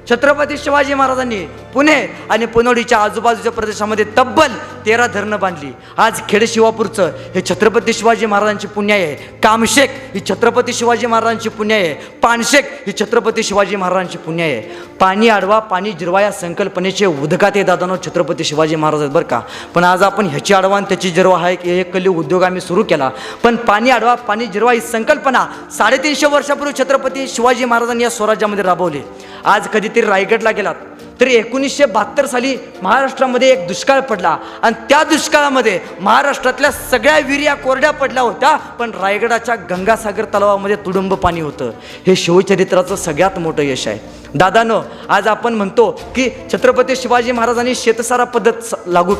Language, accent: Marathi, native